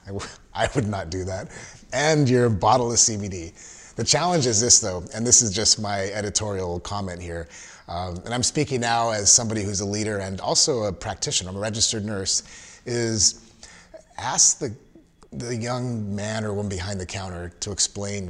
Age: 30-49